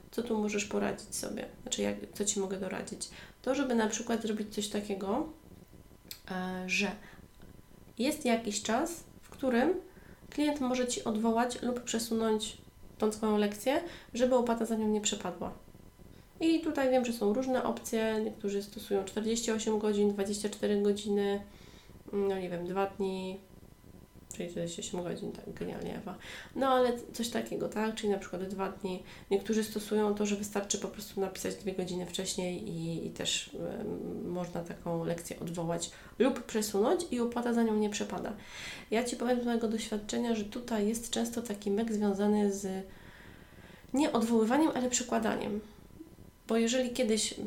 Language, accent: Polish, native